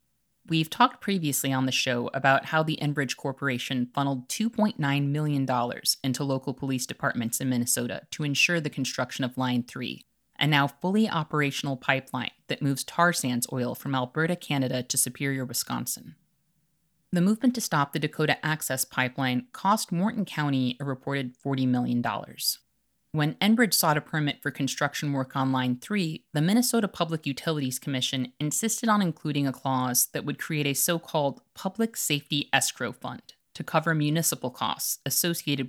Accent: American